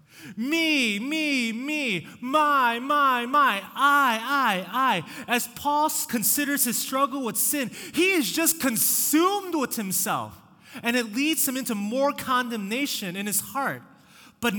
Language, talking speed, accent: English, 135 wpm, American